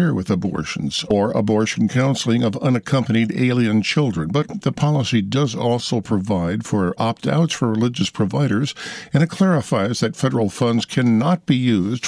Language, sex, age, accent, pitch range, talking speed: English, male, 50-69, American, 105-145 Hz, 145 wpm